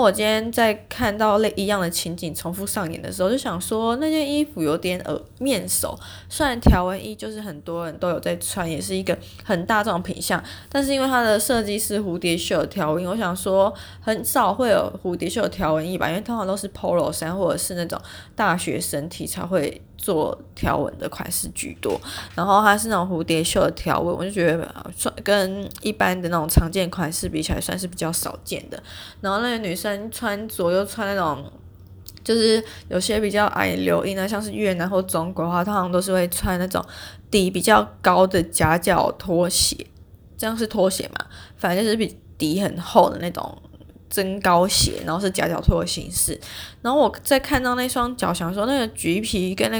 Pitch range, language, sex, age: 170-215 Hz, Chinese, female, 20-39